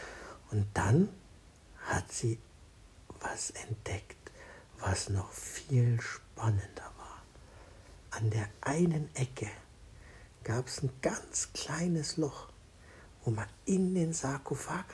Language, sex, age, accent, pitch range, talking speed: German, male, 60-79, German, 105-135 Hz, 105 wpm